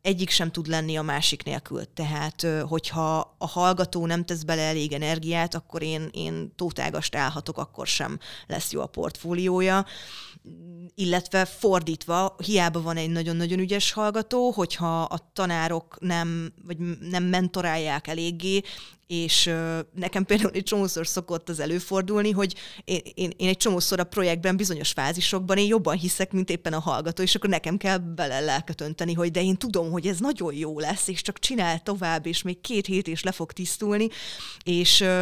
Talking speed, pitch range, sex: 160 wpm, 165-190 Hz, female